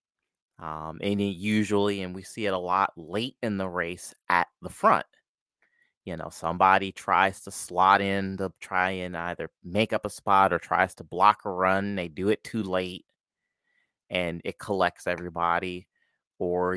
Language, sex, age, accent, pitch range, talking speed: English, male, 30-49, American, 80-95 Hz, 170 wpm